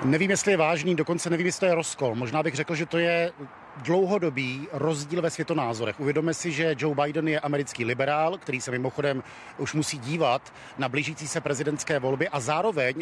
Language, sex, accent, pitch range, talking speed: Czech, male, native, 135-160 Hz, 190 wpm